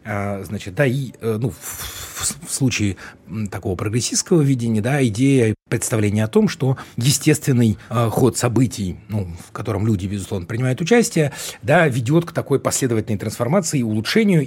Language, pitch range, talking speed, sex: Russian, 105-135 Hz, 135 wpm, male